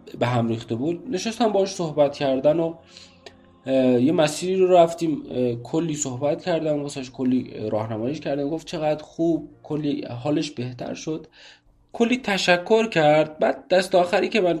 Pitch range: 120-175 Hz